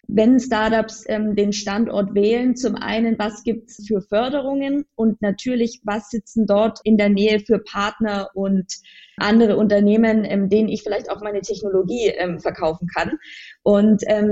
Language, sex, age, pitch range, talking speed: German, female, 20-39, 210-240 Hz, 160 wpm